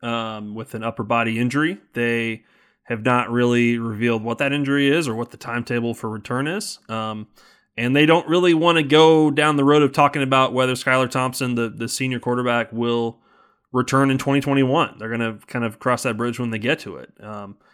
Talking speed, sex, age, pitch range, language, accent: 205 wpm, male, 20-39, 115-140 Hz, English, American